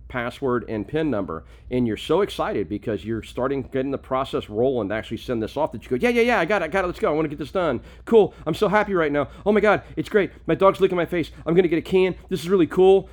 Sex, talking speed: male, 300 wpm